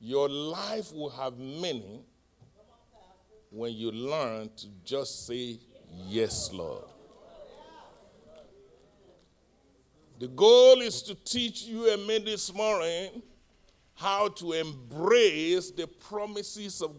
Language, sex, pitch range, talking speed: English, male, 155-245 Hz, 100 wpm